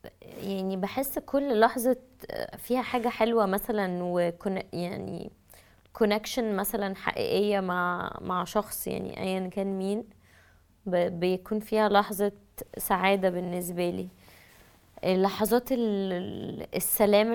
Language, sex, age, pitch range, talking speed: English, female, 20-39, 180-215 Hz, 95 wpm